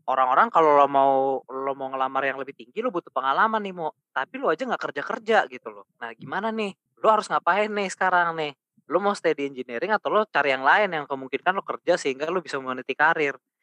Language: Indonesian